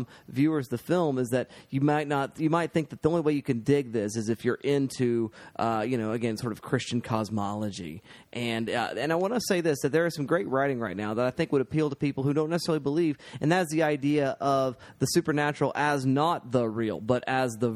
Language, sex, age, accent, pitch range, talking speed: English, male, 30-49, American, 120-140 Hz, 245 wpm